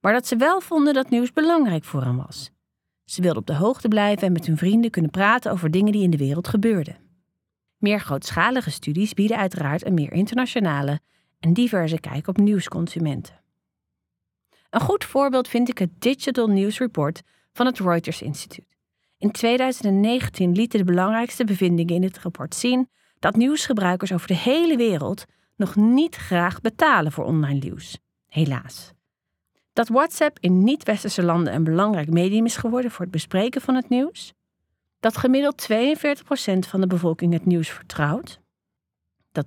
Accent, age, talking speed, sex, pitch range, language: Dutch, 40-59, 160 wpm, female, 165-240 Hz, English